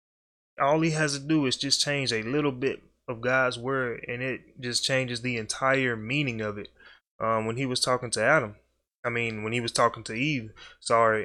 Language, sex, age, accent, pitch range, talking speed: English, male, 20-39, American, 115-140 Hz, 210 wpm